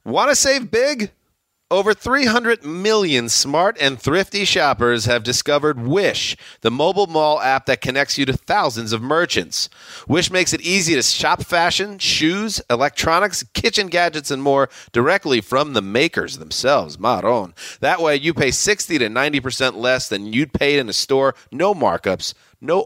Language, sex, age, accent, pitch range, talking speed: English, male, 30-49, American, 130-185 Hz, 160 wpm